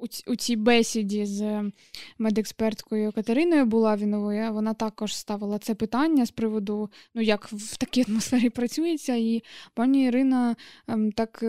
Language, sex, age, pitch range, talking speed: Ukrainian, female, 20-39, 220-245 Hz, 125 wpm